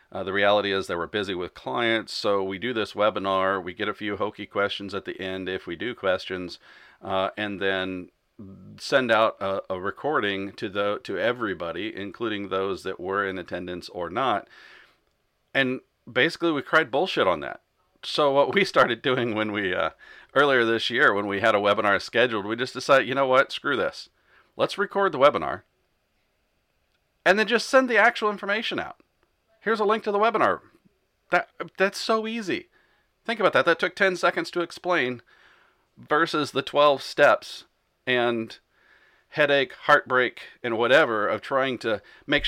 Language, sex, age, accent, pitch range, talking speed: English, male, 40-59, American, 100-170 Hz, 175 wpm